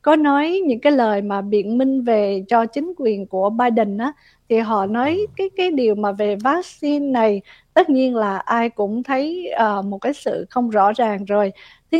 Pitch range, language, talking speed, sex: 210-270 Hz, Vietnamese, 200 wpm, female